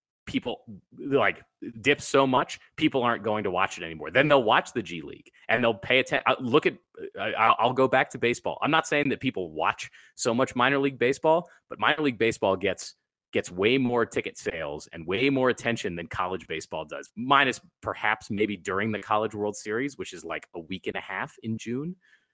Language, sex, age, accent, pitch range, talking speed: English, male, 30-49, American, 100-130 Hz, 205 wpm